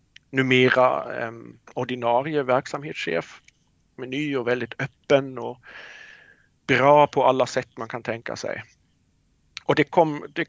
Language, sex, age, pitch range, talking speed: Swedish, male, 50-69, 115-145 Hz, 125 wpm